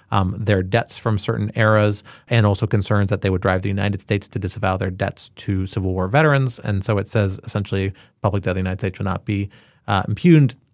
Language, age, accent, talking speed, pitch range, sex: English, 30-49, American, 225 wpm, 100-125 Hz, male